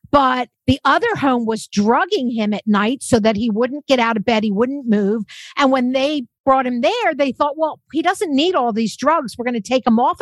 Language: English